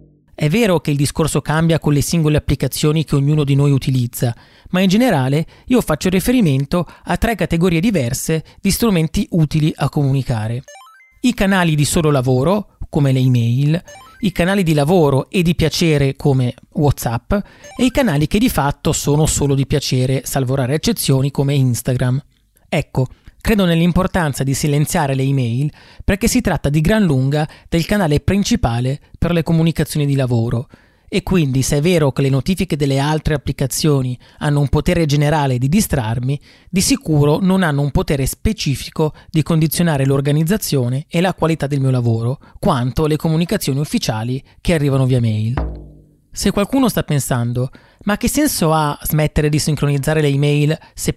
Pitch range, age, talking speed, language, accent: 135-175 Hz, 30-49, 160 wpm, Italian, native